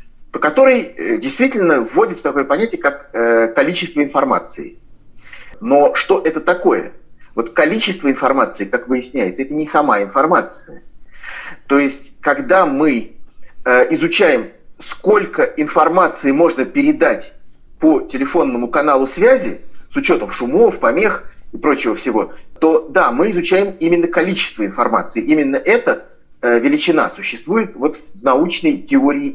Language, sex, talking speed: Russian, male, 115 wpm